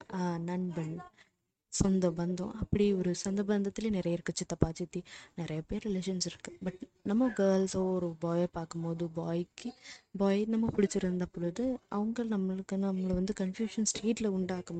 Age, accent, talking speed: 20-39, native, 135 wpm